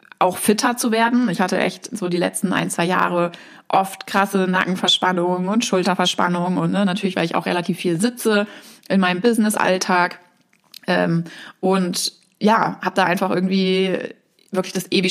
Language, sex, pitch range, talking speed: German, female, 180-215 Hz, 160 wpm